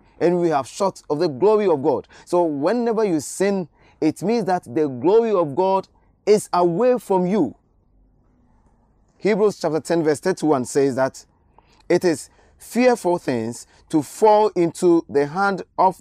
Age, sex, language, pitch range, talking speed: 30-49, male, English, 130-180 Hz, 155 wpm